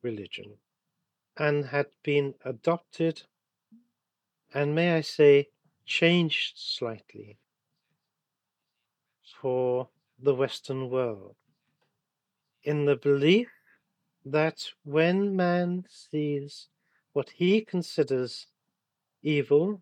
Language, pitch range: English, 140-170 Hz